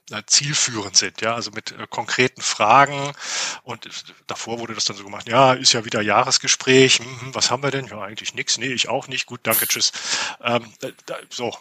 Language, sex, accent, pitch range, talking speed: German, male, German, 110-135 Hz, 190 wpm